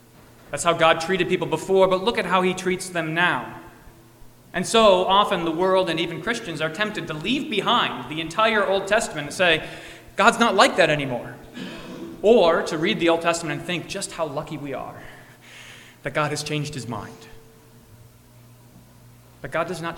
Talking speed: 185 wpm